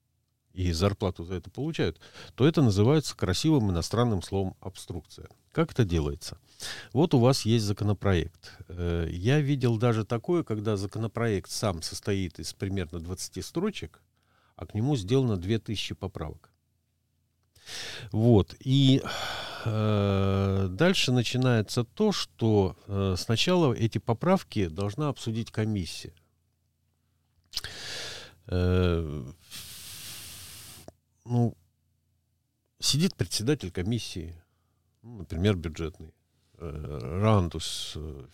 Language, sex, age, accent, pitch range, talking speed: Russian, male, 50-69, native, 95-125 Hz, 95 wpm